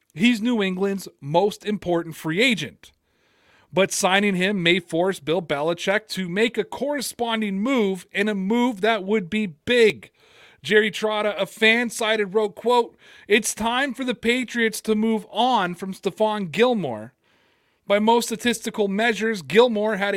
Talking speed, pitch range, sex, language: 150 wpm, 180-225 Hz, male, English